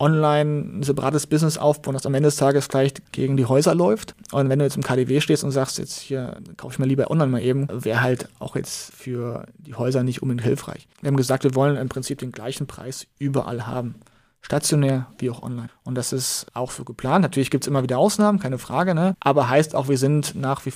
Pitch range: 130-150 Hz